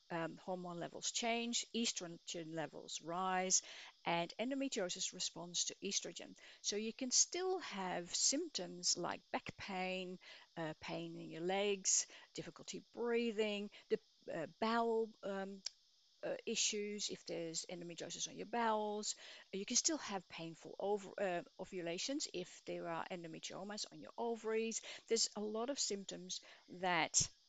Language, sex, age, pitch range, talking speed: English, female, 50-69, 175-225 Hz, 130 wpm